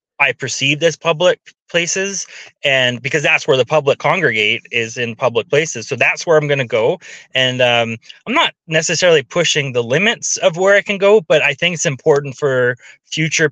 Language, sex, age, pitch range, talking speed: English, male, 20-39, 130-160 Hz, 190 wpm